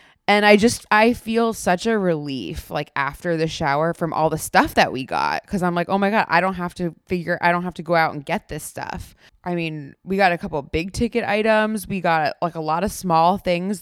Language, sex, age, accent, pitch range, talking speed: English, female, 20-39, American, 150-190 Hz, 260 wpm